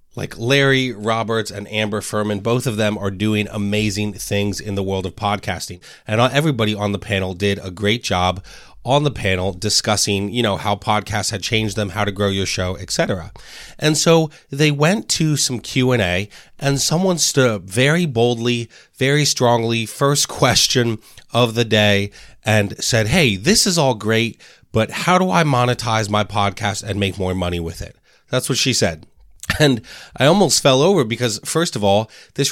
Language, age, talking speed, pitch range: English, 30-49, 180 wpm, 100-130 Hz